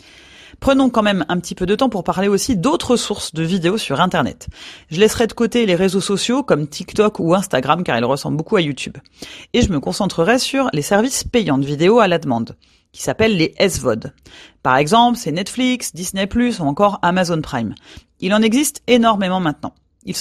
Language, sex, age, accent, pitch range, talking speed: French, female, 30-49, French, 165-235 Hz, 195 wpm